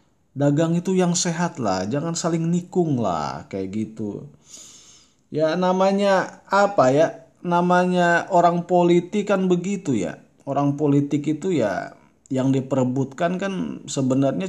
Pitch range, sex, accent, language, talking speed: 135-180 Hz, male, native, Indonesian, 120 wpm